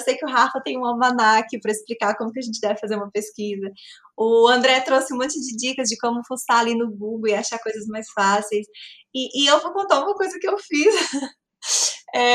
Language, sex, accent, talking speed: Portuguese, female, Brazilian, 230 wpm